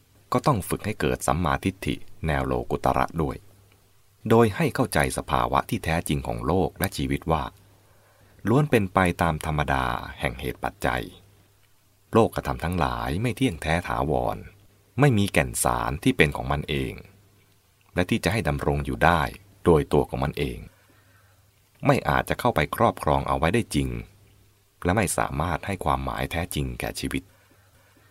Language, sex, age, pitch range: English, male, 30-49, 70-100 Hz